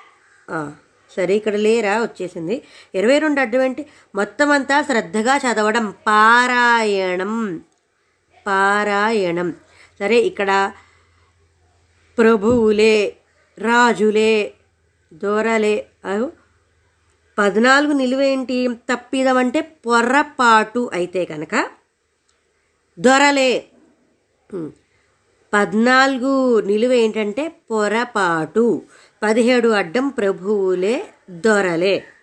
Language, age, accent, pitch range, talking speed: Telugu, 20-39, native, 200-270 Hz, 60 wpm